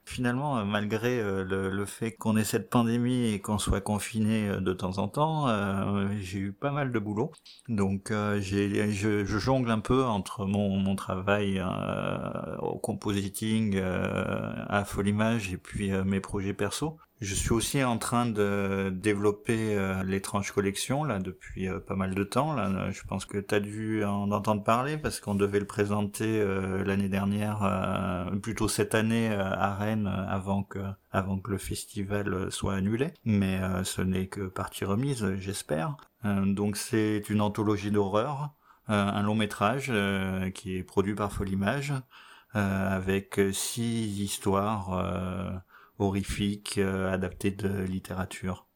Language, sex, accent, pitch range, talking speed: French, male, French, 95-110 Hz, 155 wpm